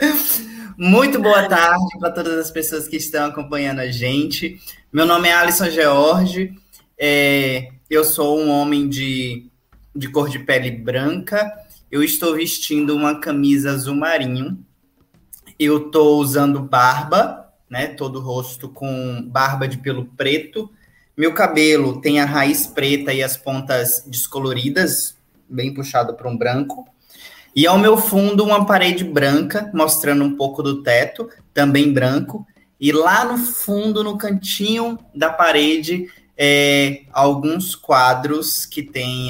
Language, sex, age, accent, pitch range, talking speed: Portuguese, male, 20-39, Brazilian, 130-170 Hz, 135 wpm